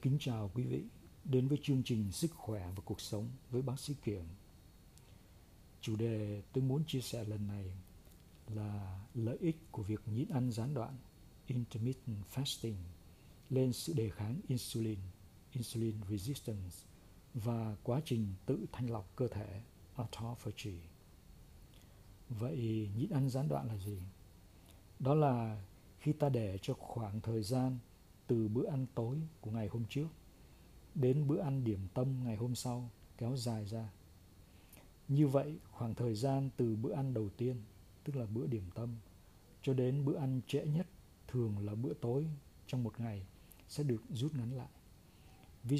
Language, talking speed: Vietnamese, 160 wpm